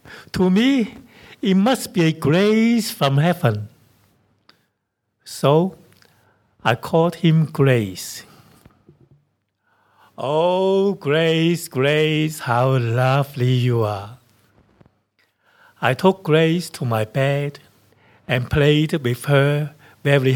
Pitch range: 105-155 Hz